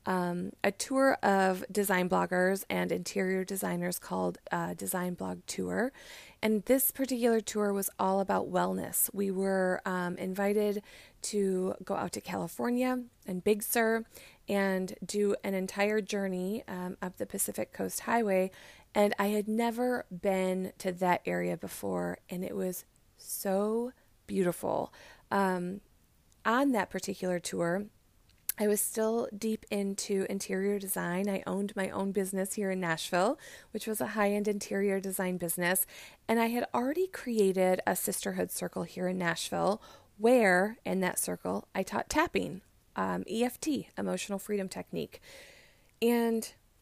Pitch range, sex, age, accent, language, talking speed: 185-220 Hz, female, 20-39, American, English, 140 wpm